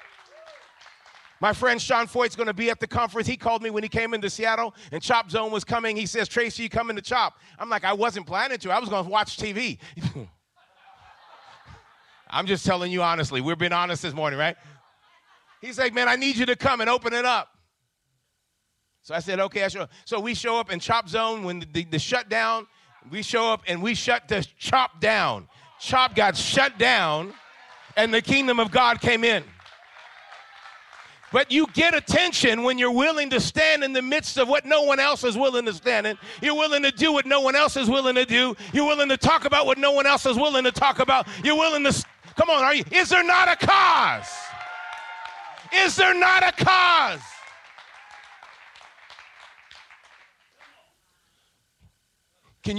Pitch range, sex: 190-265 Hz, male